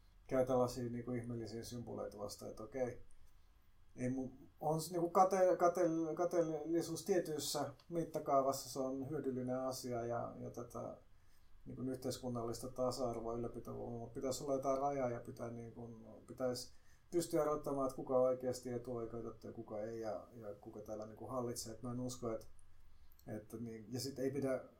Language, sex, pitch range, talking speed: Finnish, male, 110-130 Hz, 125 wpm